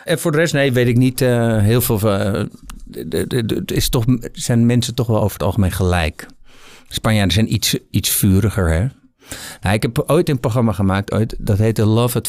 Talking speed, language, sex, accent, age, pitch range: 175 wpm, Dutch, male, Dutch, 50-69, 100-130 Hz